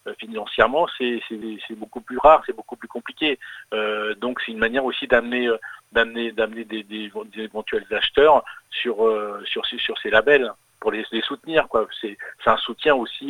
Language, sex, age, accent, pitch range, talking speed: French, male, 40-59, French, 115-195 Hz, 190 wpm